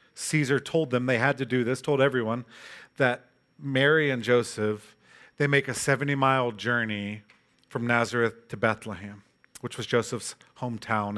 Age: 40-59